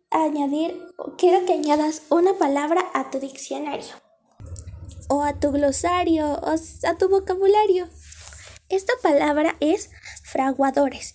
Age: 20-39